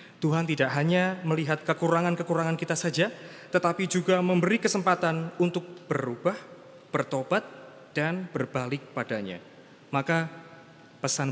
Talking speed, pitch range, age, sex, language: 100 wpm, 120-160 Hz, 20-39, male, Indonesian